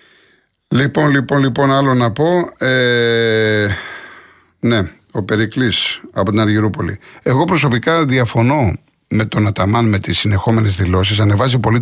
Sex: male